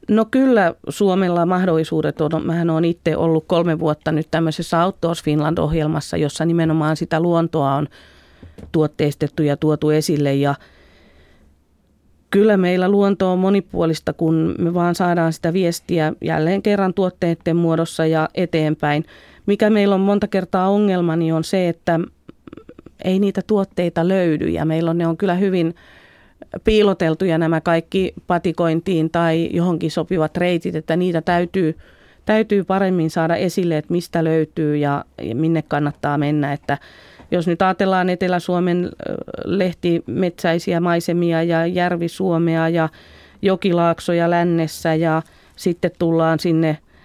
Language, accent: Finnish, native